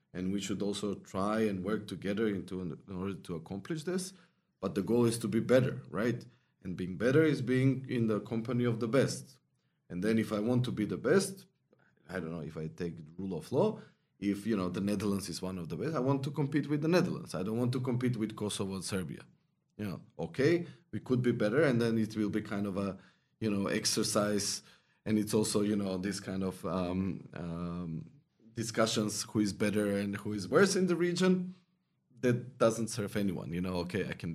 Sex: male